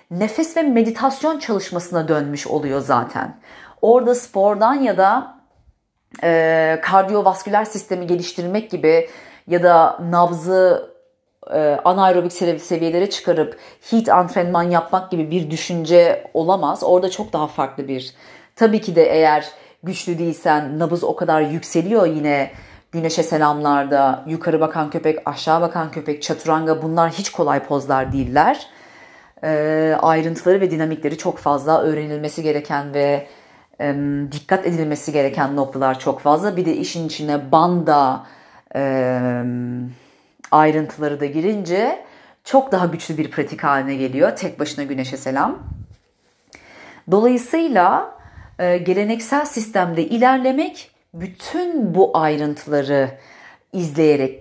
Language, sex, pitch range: Turkish, female, 145-190 Hz